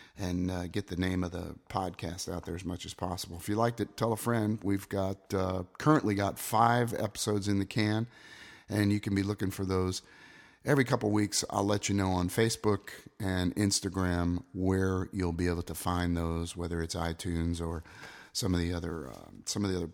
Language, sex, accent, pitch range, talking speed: English, male, American, 90-110 Hz, 210 wpm